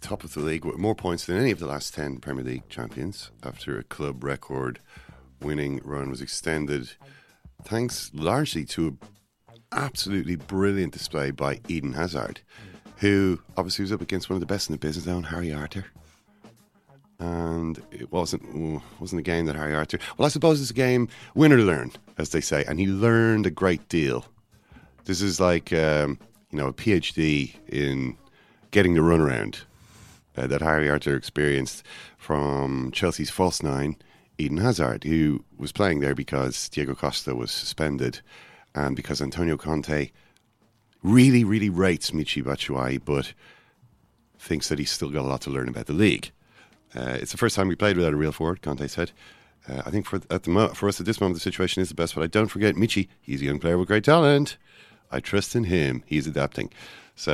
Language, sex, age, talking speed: English, male, 30-49, 190 wpm